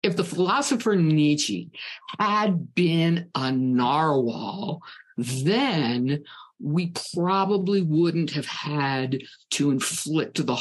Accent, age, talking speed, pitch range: American, 50-69, 95 wpm, 125-175 Hz